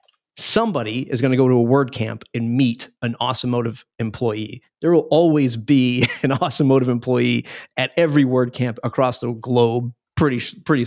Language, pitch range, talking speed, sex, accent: English, 120-135 Hz, 155 wpm, male, American